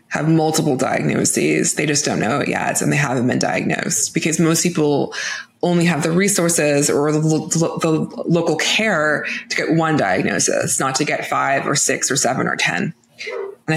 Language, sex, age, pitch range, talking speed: English, female, 20-39, 140-170 Hz, 180 wpm